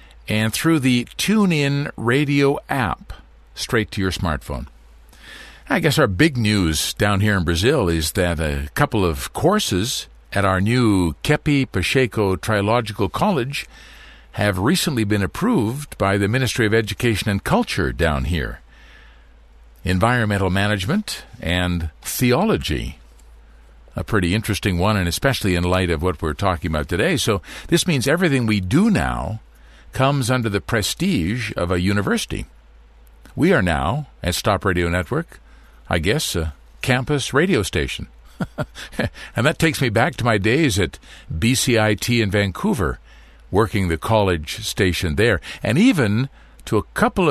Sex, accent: male, American